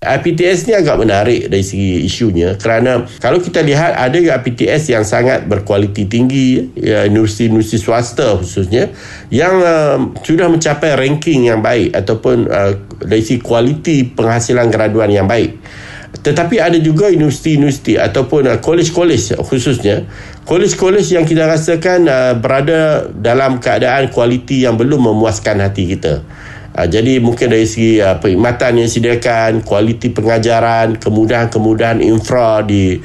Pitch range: 110-145 Hz